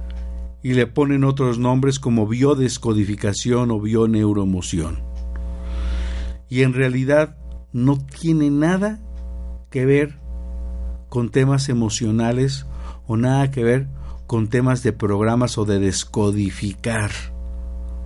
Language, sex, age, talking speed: Spanish, male, 50-69, 105 wpm